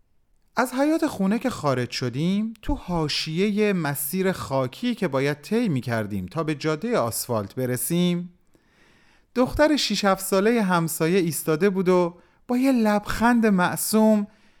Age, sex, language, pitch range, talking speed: 30-49, male, Persian, 130-205 Hz, 125 wpm